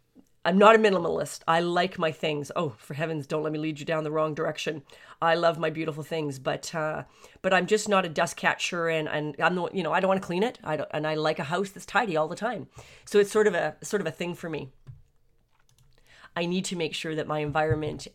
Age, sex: 40-59, female